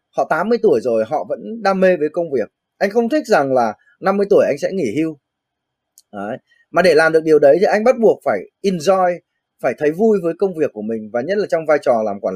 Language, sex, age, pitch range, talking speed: Vietnamese, male, 20-39, 135-180 Hz, 250 wpm